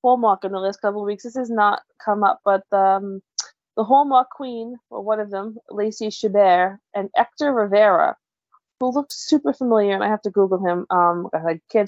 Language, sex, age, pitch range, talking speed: English, female, 20-39, 180-215 Hz, 195 wpm